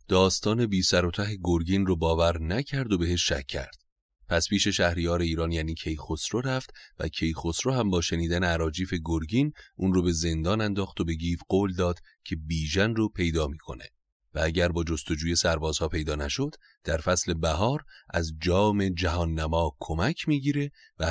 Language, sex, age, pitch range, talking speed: Persian, male, 30-49, 80-95 Hz, 160 wpm